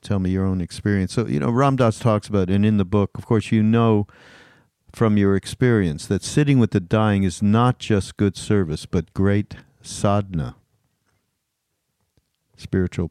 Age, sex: 50-69, male